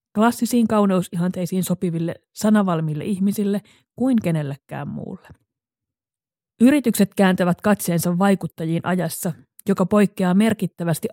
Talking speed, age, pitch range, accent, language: 85 wpm, 30-49, 175-210 Hz, native, Finnish